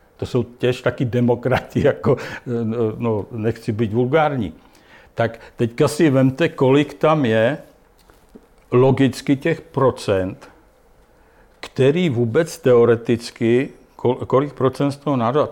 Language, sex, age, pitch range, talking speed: Slovak, male, 60-79, 115-135 Hz, 115 wpm